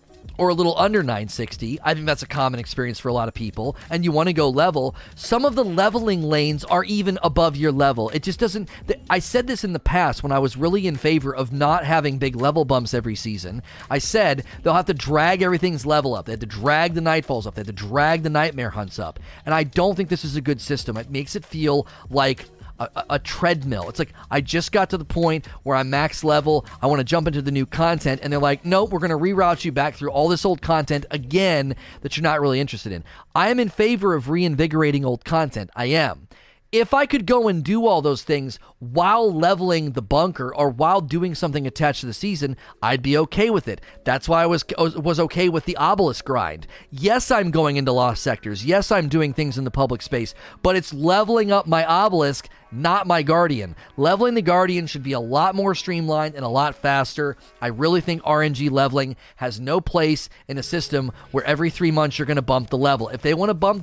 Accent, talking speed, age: American, 230 wpm, 30-49